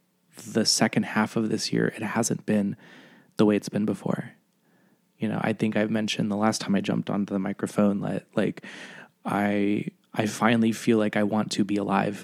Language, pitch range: English, 105-120 Hz